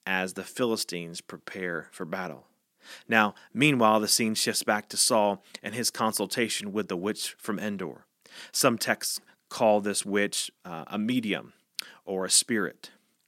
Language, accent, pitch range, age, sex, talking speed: English, American, 105-130 Hz, 30-49, male, 150 wpm